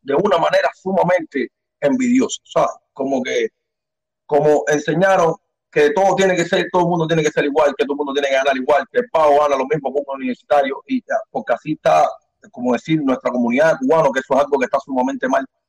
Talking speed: 220 wpm